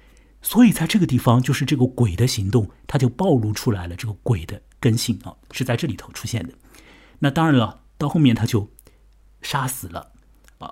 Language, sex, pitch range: Chinese, male, 105-140 Hz